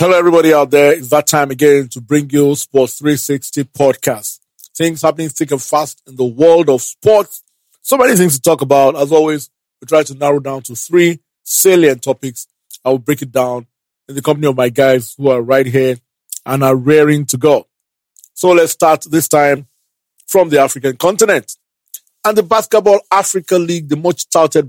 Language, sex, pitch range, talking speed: English, male, 130-155 Hz, 190 wpm